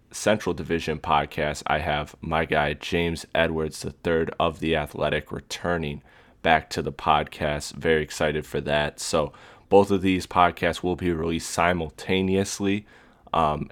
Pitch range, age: 80-85 Hz, 20-39